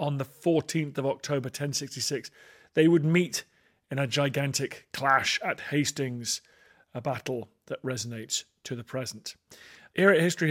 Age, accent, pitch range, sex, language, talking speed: 40-59, British, 125-165 Hz, male, English, 145 wpm